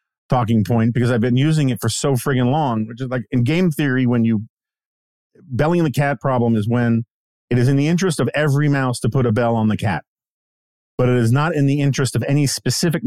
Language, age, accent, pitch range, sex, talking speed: English, 40-59, American, 110-135 Hz, male, 230 wpm